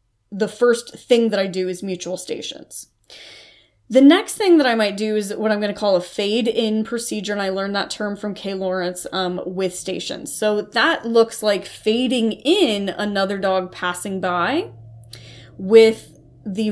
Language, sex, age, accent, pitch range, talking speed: English, female, 20-39, American, 185-230 Hz, 175 wpm